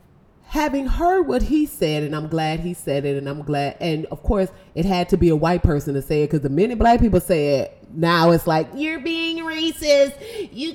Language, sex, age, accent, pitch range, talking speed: English, female, 30-49, American, 160-235 Hz, 230 wpm